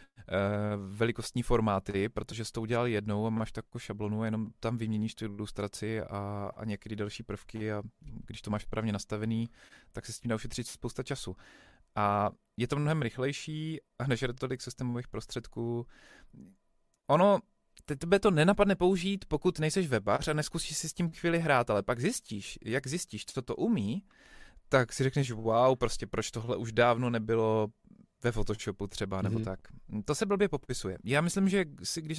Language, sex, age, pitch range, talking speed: Czech, male, 20-39, 110-145 Hz, 170 wpm